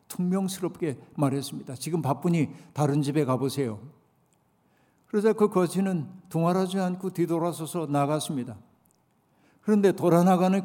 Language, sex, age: Korean, male, 50-69